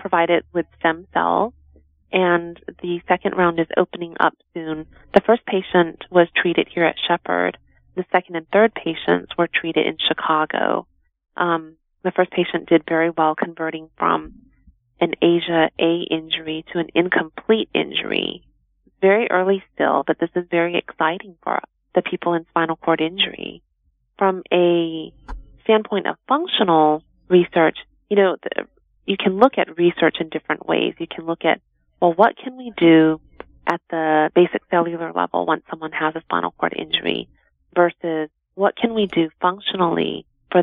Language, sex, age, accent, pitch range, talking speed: English, female, 30-49, American, 160-180 Hz, 155 wpm